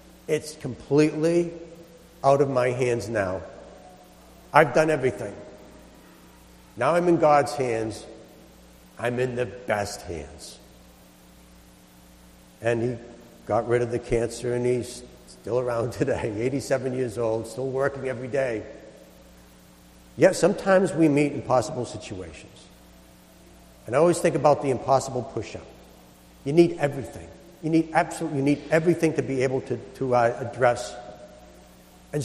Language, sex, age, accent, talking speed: English, male, 60-79, American, 135 wpm